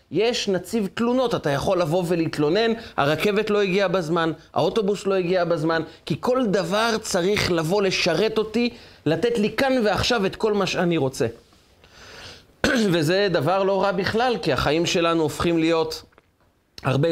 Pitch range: 140-215 Hz